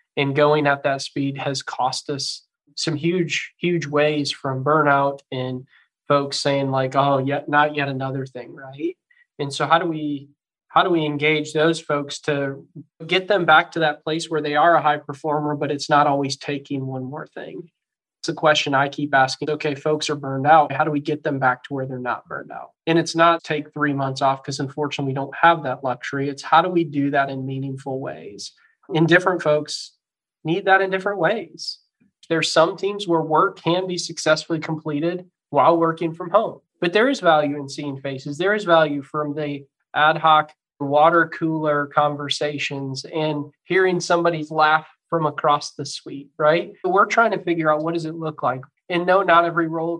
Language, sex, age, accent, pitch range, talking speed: English, male, 20-39, American, 140-165 Hz, 200 wpm